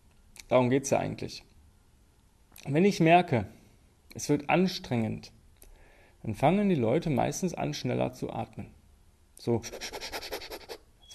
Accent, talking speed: German, 120 wpm